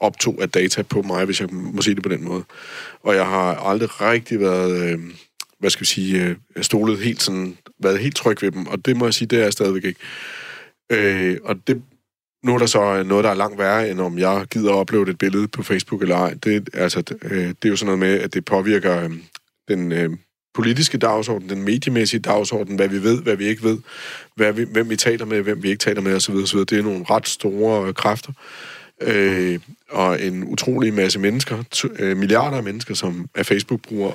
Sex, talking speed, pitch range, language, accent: male, 220 wpm, 95-115 Hz, Danish, native